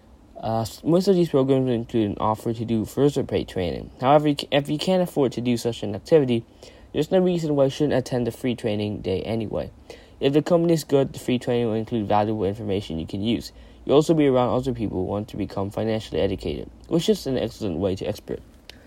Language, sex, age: English, male, 10-29